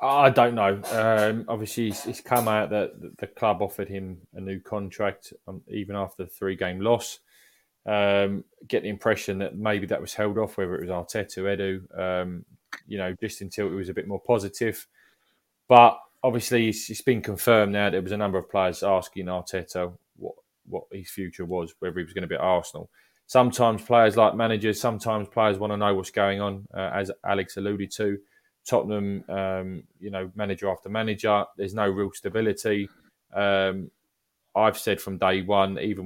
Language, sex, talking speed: English, male, 185 wpm